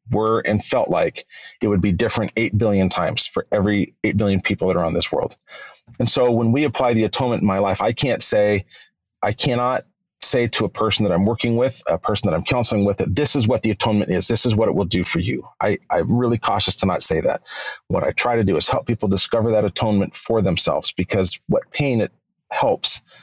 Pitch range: 100-120 Hz